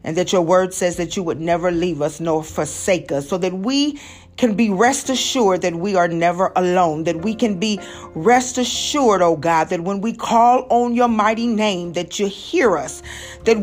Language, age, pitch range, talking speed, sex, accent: English, 40-59, 175-235 Hz, 205 wpm, female, American